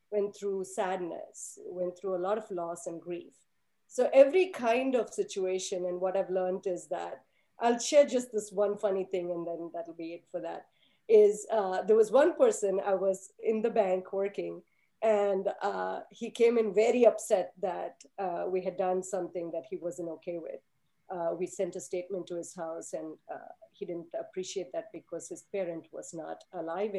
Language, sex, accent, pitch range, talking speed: English, female, Indian, 180-230 Hz, 190 wpm